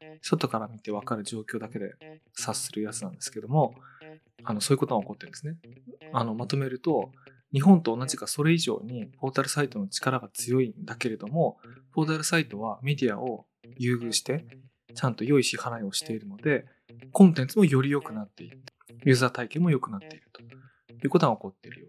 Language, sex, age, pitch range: Japanese, male, 20-39, 120-155 Hz